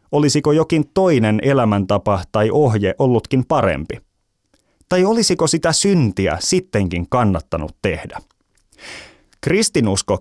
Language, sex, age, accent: Finnish, male, 30-49, native